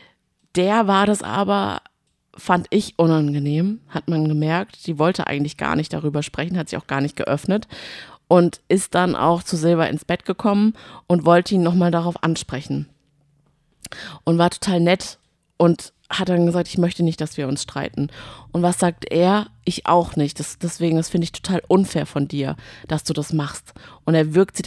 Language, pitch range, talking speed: German, 155-185 Hz, 185 wpm